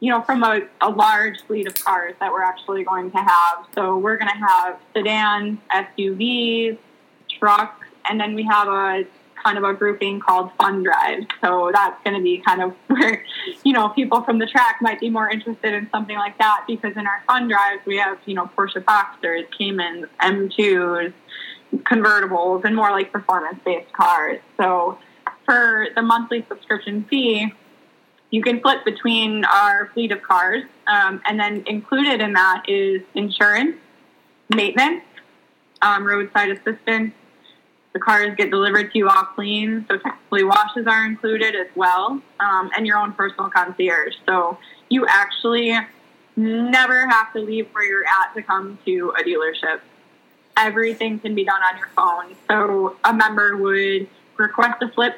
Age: 10-29